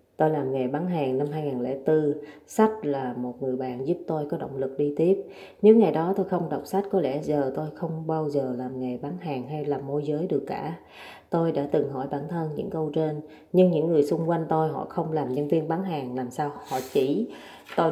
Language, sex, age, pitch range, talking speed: Vietnamese, female, 20-39, 145-180 Hz, 235 wpm